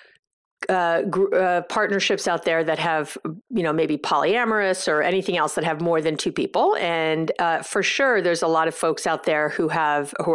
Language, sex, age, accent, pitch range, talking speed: English, female, 50-69, American, 170-225 Hz, 205 wpm